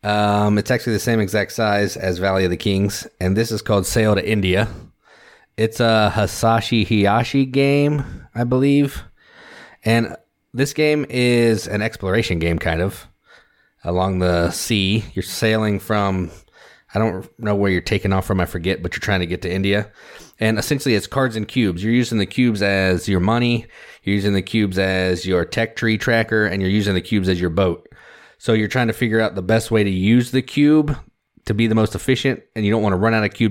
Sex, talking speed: male, 205 wpm